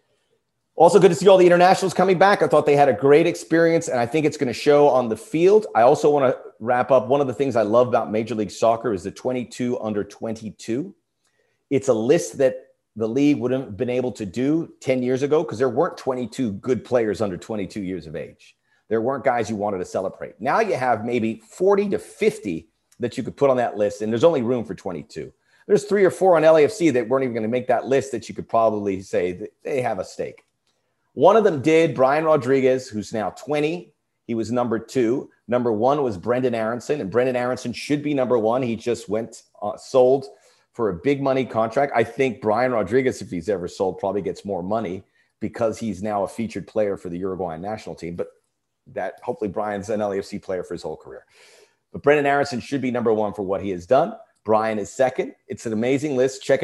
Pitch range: 110-150 Hz